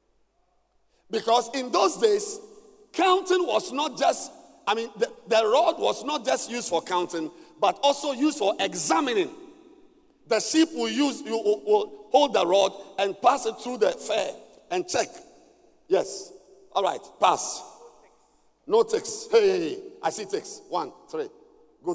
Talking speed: 155 wpm